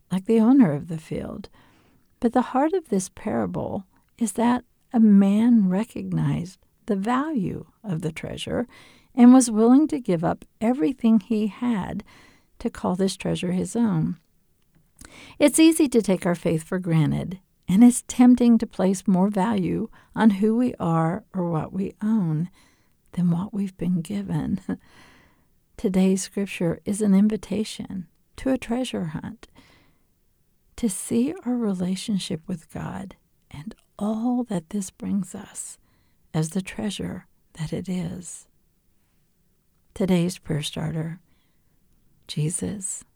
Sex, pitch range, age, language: female, 175-225 Hz, 50-69, English